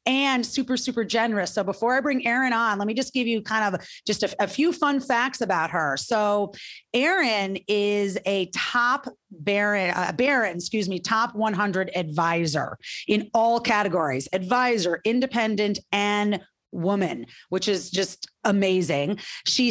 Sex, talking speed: female, 155 wpm